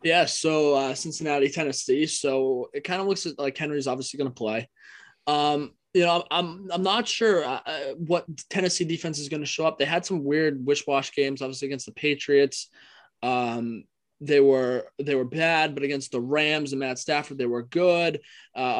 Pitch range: 130-160 Hz